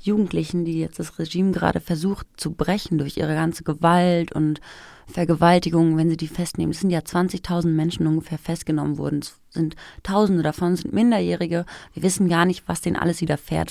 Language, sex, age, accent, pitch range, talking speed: German, female, 30-49, German, 160-185 Hz, 185 wpm